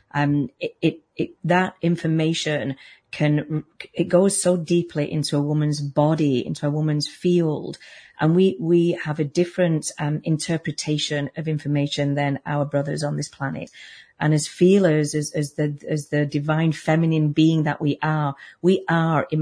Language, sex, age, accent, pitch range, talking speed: English, female, 40-59, British, 145-165 Hz, 160 wpm